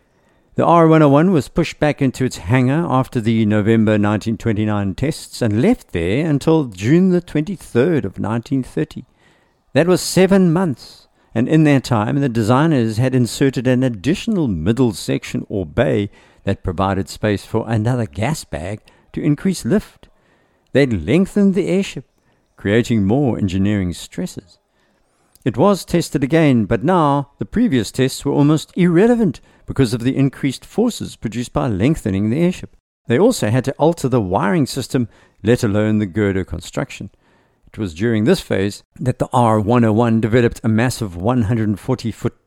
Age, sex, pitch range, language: 60-79, male, 110-150 Hz, English